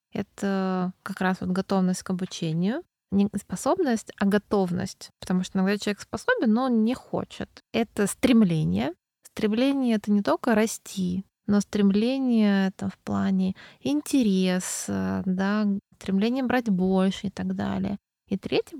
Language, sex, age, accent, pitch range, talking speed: Russian, female, 20-39, native, 185-215 Hz, 140 wpm